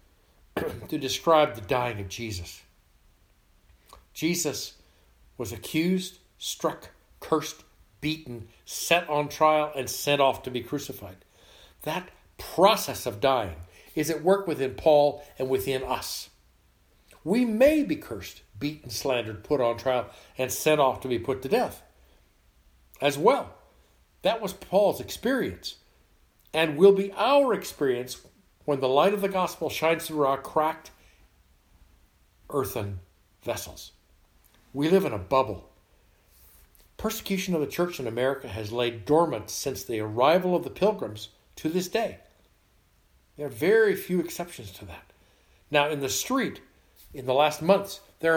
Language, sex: English, male